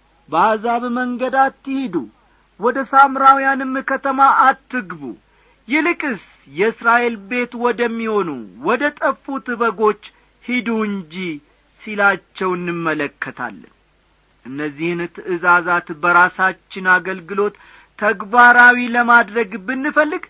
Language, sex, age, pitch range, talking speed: Amharic, male, 50-69, 200-250 Hz, 75 wpm